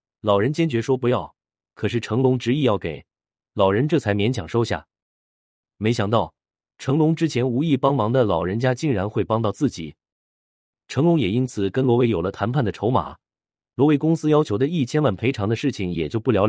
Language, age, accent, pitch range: Chinese, 30-49, native, 95-135 Hz